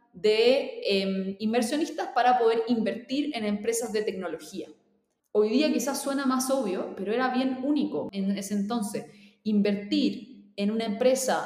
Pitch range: 205-260 Hz